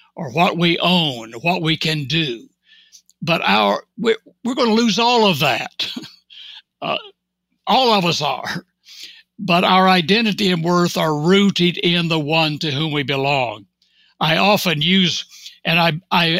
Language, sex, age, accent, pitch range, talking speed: English, male, 60-79, American, 155-200 Hz, 155 wpm